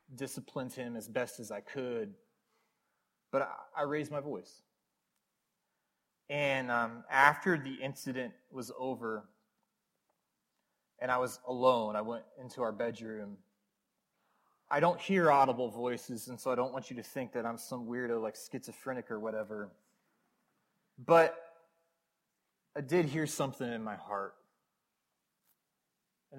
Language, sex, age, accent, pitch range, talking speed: English, male, 20-39, American, 115-145 Hz, 135 wpm